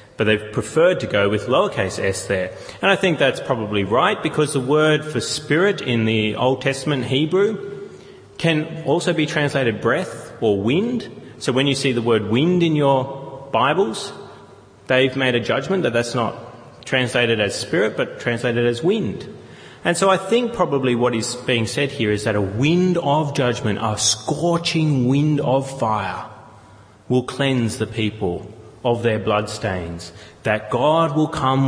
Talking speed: 165 wpm